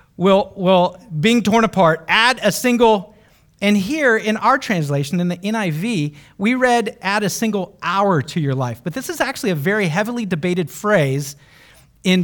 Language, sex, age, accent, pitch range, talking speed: English, male, 40-59, American, 155-205 Hz, 170 wpm